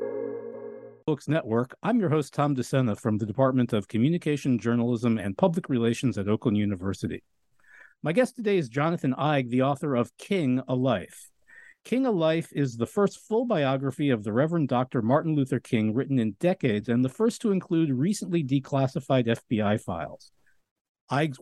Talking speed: 165 wpm